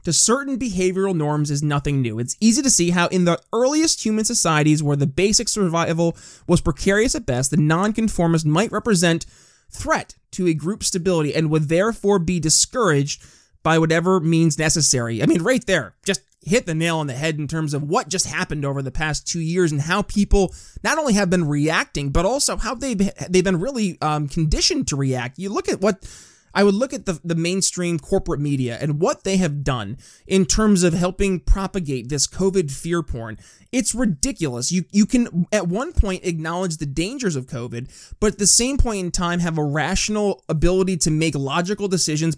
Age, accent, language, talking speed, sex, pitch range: 20-39, American, English, 195 wpm, male, 150-200 Hz